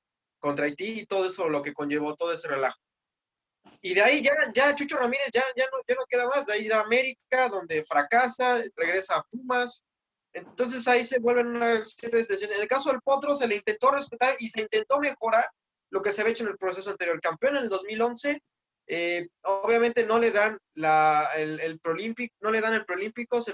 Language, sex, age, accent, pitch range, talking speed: Spanish, male, 20-39, Mexican, 170-245 Hz, 205 wpm